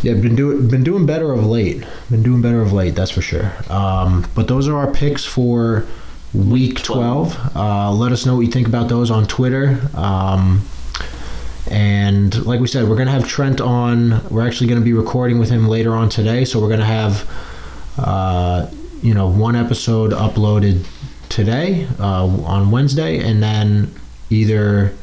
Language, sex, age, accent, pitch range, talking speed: English, male, 20-39, American, 100-120 Hz, 175 wpm